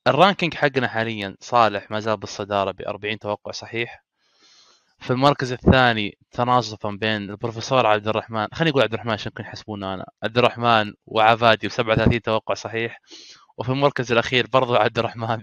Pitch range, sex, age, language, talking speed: 105-125 Hz, male, 20-39, Arabic, 150 wpm